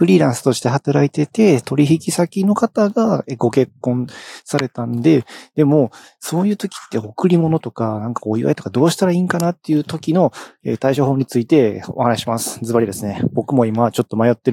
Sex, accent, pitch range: male, native, 105-140 Hz